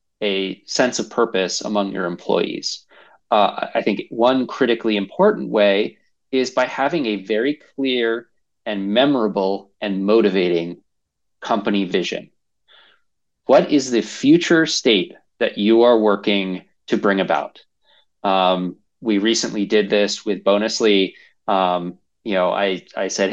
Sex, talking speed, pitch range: male, 130 wpm, 100-120 Hz